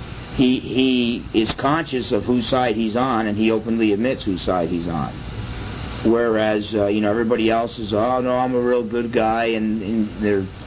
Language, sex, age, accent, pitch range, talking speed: English, male, 50-69, American, 110-130 Hz, 185 wpm